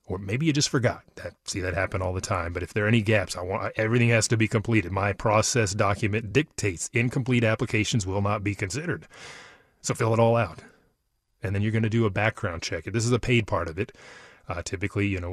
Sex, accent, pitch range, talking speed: male, American, 95-115 Hz, 235 wpm